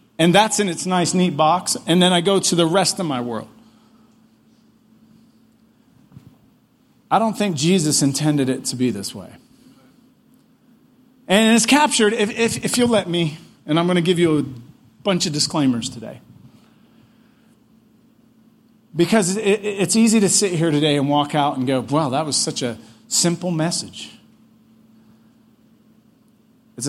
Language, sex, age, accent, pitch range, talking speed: English, male, 40-59, American, 150-225 Hz, 150 wpm